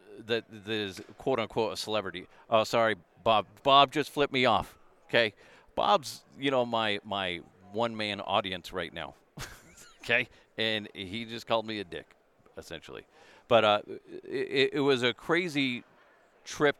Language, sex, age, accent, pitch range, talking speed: English, male, 40-59, American, 100-130 Hz, 145 wpm